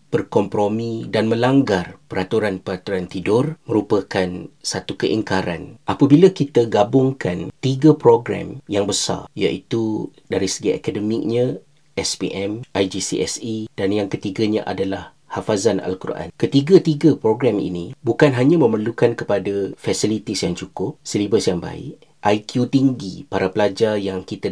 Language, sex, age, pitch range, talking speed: Malay, male, 40-59, 100-120 Hz, 115 wpm